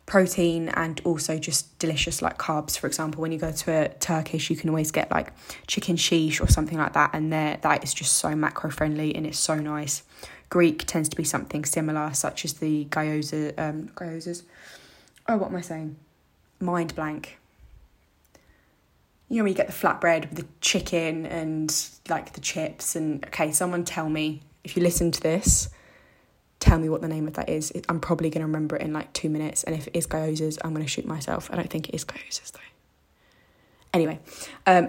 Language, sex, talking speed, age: English, female, 205 wpm, 10-29